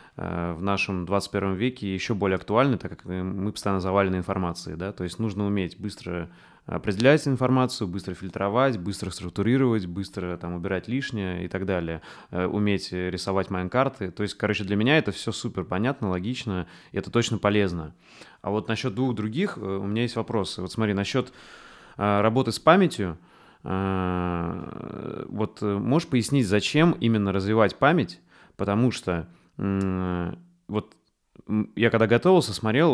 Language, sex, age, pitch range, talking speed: Russian, male, 20-39, 95-125 Hz, 145 wpm